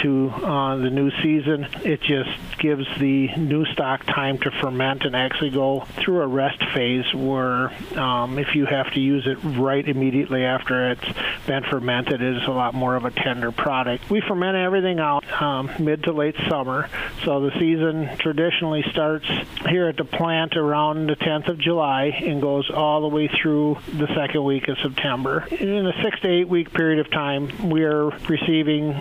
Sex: male